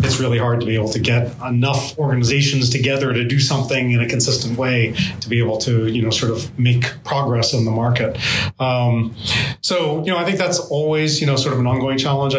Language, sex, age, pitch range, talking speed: English, male, 30-49, 125-145 Hz, 225 wpm